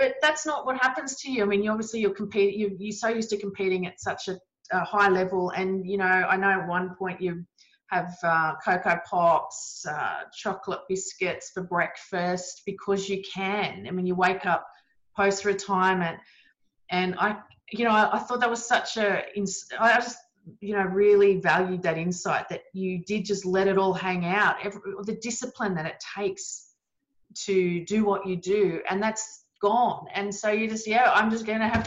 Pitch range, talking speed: 185-225 Hz, 190 wpm